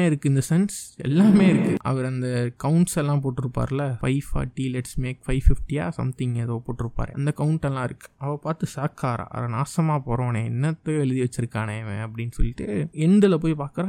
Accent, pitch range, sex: native, 120-150 Hz, male